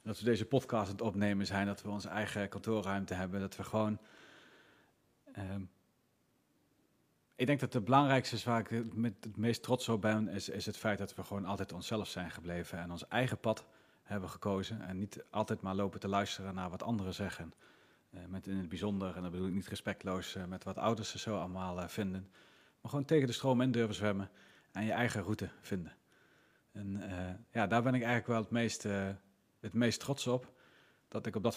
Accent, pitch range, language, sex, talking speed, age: Dutch, 100-120 Hz, Dutch, male, 210 wpm, 40-59